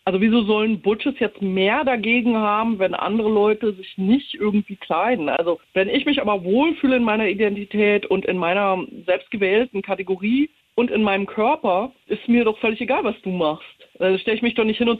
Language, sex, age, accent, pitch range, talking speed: German, female, 40-59, German, 190-235 Hz, 200 wpm